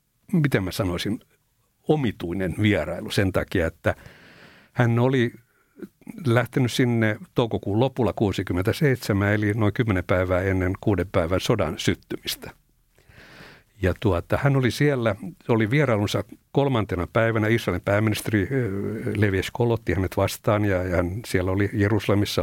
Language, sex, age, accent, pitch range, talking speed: Finnish, male, 60-79, native, 95-115 Hz, 120 wpm